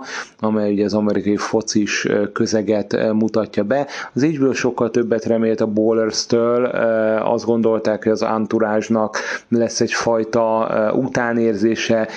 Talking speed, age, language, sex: 120 wpm, 30-49, Hungarian, male